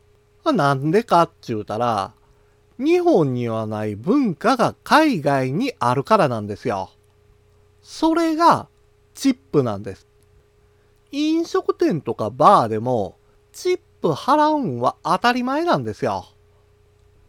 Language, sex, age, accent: Japanese, male, 40-59, native